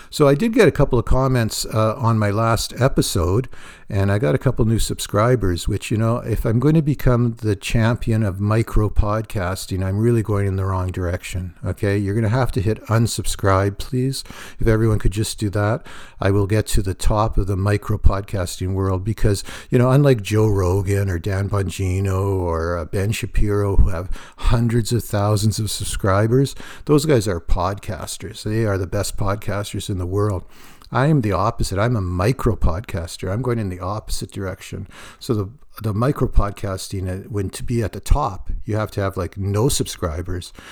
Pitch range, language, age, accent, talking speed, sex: 95-115 Hz, English, 60-79, American, 195 wpm, male